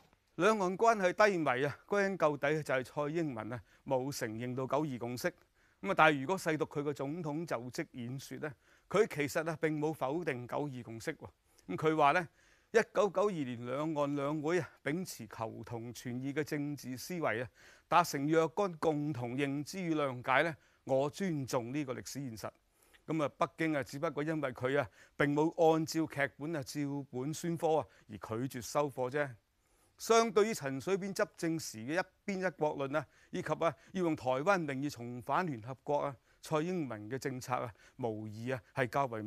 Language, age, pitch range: Chinese, 30-49, 125-165 Hz